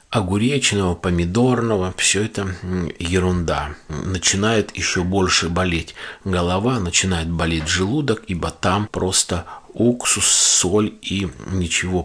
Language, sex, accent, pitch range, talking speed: Russian, male, native, 85-105 Hz, 100 wpm